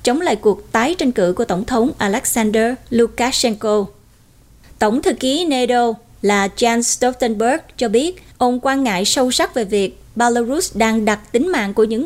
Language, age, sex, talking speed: Vietnamese, 20-39, female, 170 wpm